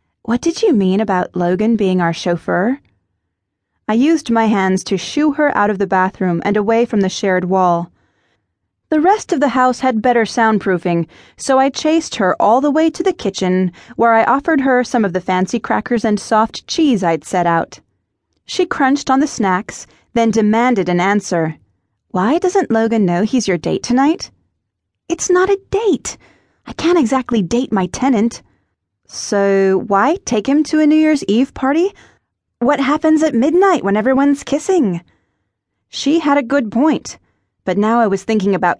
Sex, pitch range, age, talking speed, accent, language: female, 185-265 Hz, 30-49, 175 wpm, American, English